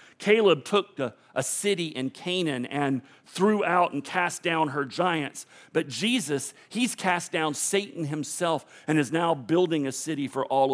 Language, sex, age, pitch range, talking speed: English, male, 50-69, 130-185 Hz, 170 wpm